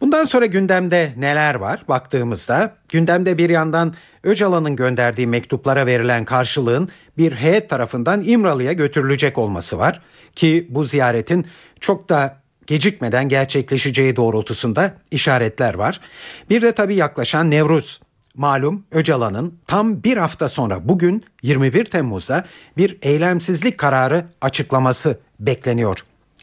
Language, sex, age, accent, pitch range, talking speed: Turkish, male, 50-69, native, 125-185 Hz, 115 wpm